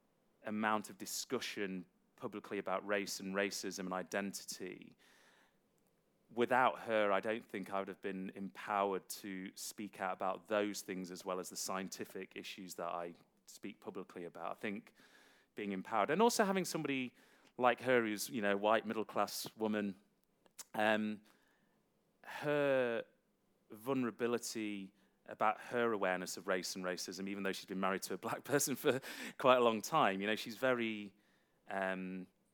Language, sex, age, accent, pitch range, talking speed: English, male, 30-49, British, 95-115 Hz, 155 wpm